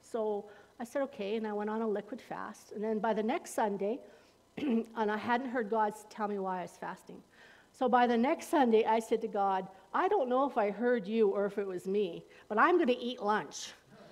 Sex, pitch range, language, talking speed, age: female, 210-290 Hz, English, 235 wpm, 50-69